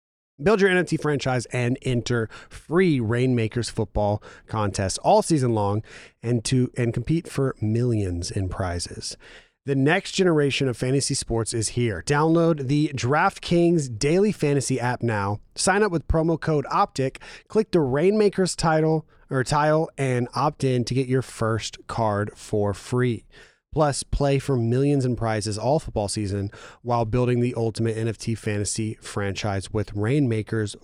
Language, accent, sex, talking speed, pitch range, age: English, American, male, 150 wpm, 110-150 Hz, 30-49